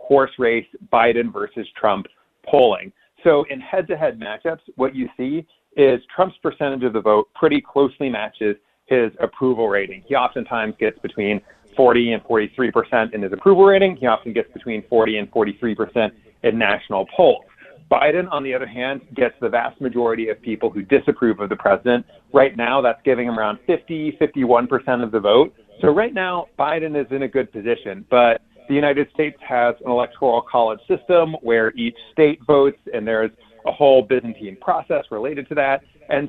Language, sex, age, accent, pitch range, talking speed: English, male, 40-59, American, 115-145 Hz, 175 wpm